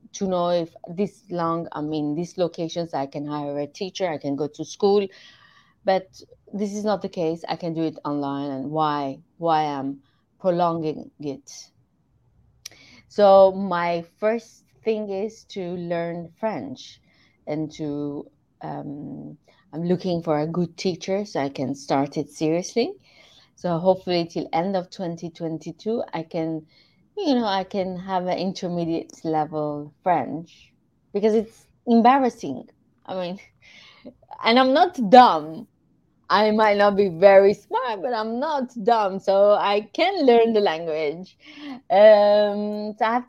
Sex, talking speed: female, 145 wpm